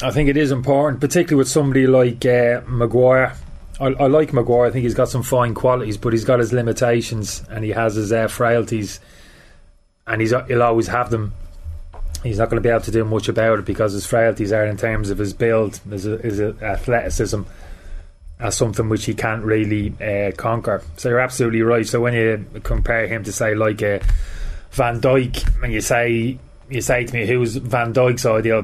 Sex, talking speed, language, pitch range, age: male, 200 wpm, English, 100-120 Hz, 20-39